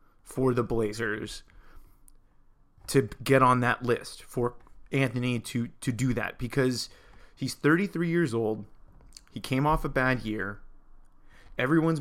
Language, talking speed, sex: English, 130 wpm, male